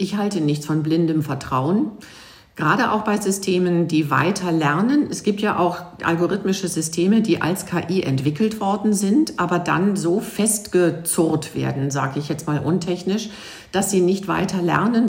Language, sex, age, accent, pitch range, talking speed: German, female, 50-69, German, 155-195 Hz, 160 wpm